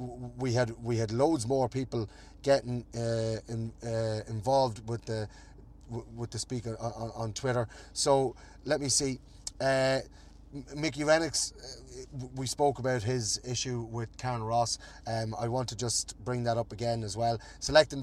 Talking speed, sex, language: 155 wpm, male, English